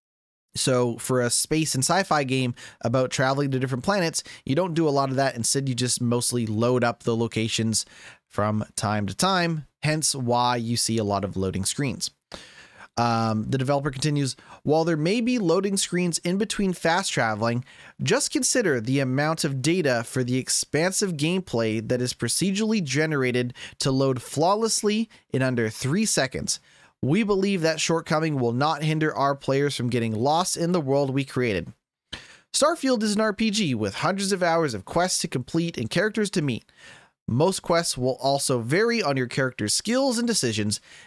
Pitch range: 125-180 Hz